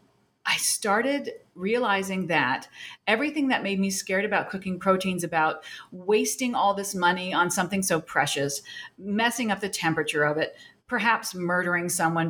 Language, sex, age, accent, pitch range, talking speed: English, female, 40-59, American, 180-230 Hz, 145 wpm